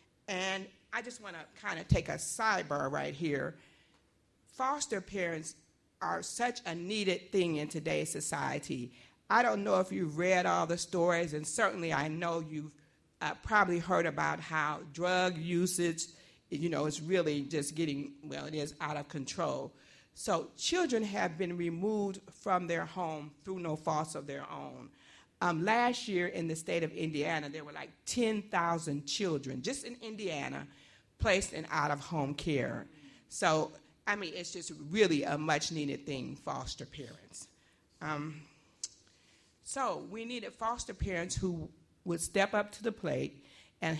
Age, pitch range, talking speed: 50-69, 150-190 Hz, 155 wpm